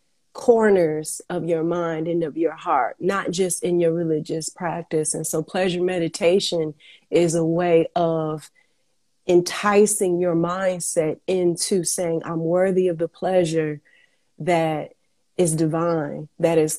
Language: English